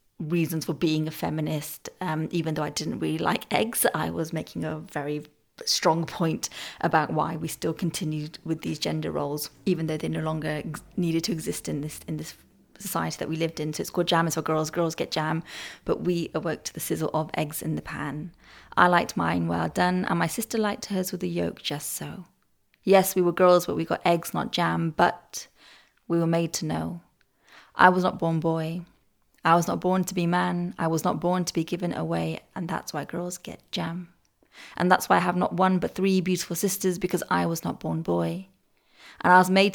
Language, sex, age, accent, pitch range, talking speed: English, female, 30-49, British, 155-180 Hz, 220 wpm